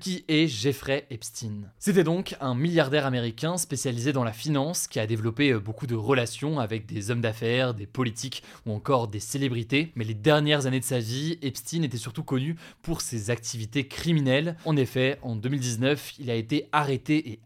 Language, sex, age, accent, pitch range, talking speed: French, male, 20-39, French, 115-145 Hz, 180 wpm